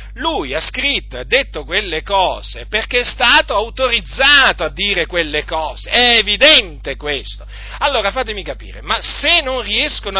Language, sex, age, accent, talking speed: Italian, male, 40-59, native, 145 wpm